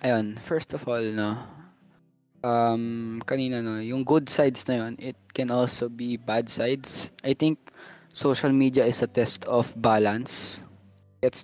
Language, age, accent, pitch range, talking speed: Filipino, 20-39, native, 115-135 Hz, 155 wpm